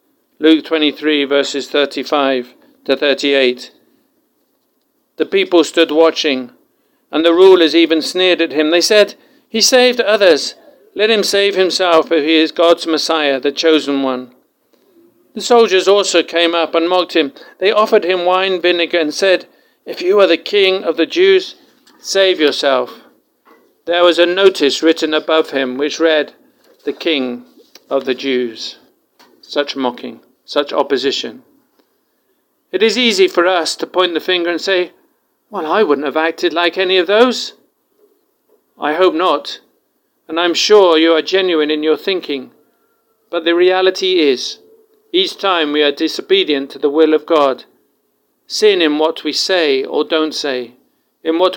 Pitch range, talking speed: 150-195 Hz, 155 wpm